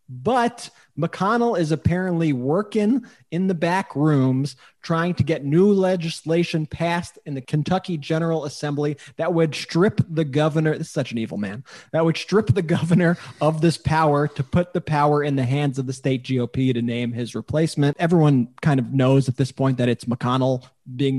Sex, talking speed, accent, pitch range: male, 185 wpm, American, 130-170 Hz